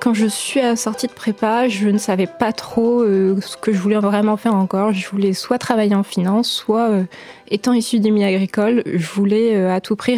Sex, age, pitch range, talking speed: female, 20-39, 195-230 Hz, 235 wpm